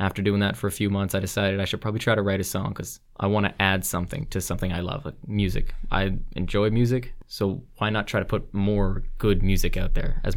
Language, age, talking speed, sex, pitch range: English, 20-39, 255 wpm, male, 95-120 Hz